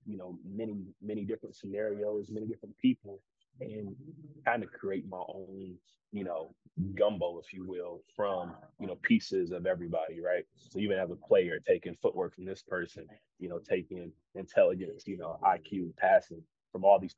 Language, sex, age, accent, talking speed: English, male, 30-49, American, 175 wpm